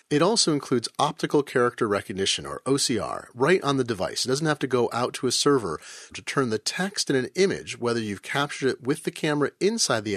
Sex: male